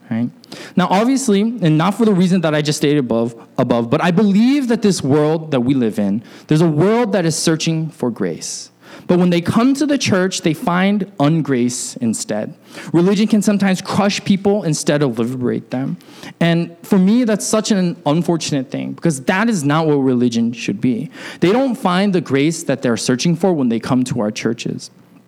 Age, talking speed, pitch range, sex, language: 20-39, 195 wpm, 140-195 Hz, male, English